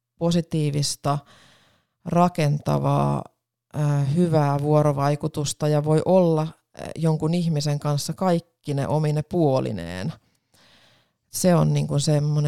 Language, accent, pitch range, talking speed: Finnish, native, 140-160 Hz, 80 wpm